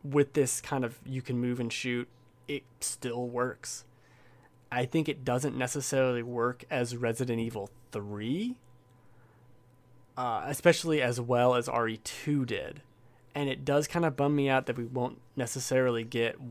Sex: male